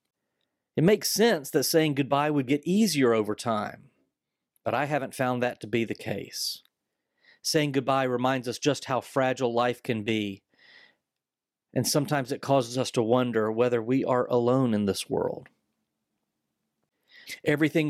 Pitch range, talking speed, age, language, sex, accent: 120-145 Hz, 150 wpm, 40-59, English, male, American